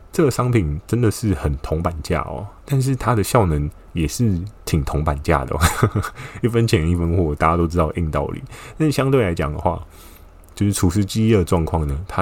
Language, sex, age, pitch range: Chinese, male, 20-39, 75-95 Hz